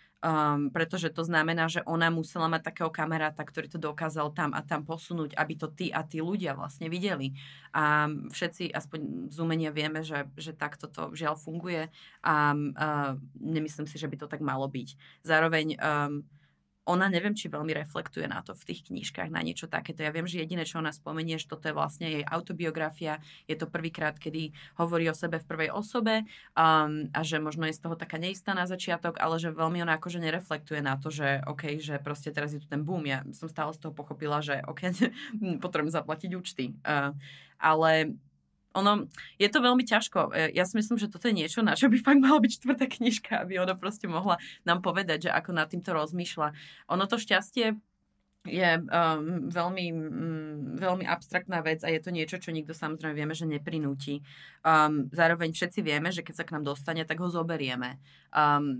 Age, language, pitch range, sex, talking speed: 20-39, Slovak, 150-175 Hz, female, 195 wpm